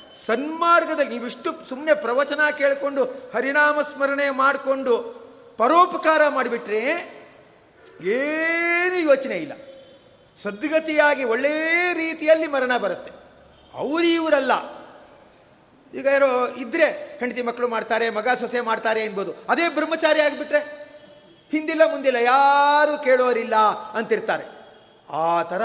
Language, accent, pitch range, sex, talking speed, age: Kannada, native, 250-315 Hz, male, 90 wpm, 50-69